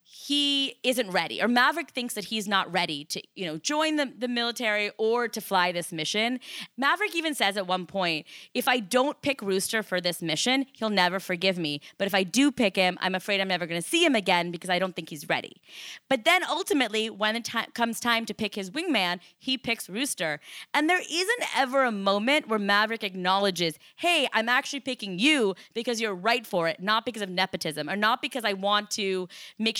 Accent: American